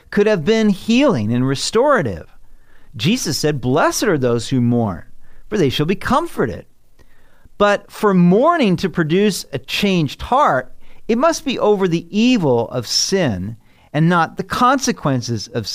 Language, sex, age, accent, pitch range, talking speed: English, male, 40-59, American, 125-195 Hz, 150 wpm